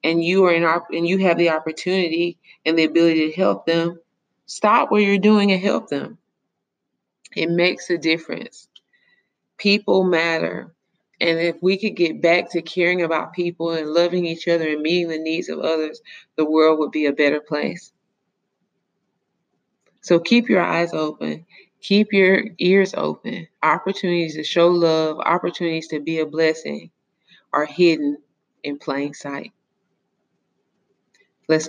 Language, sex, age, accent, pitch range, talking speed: English, female, 20-39, American, 150-175 Hz, 150 wpm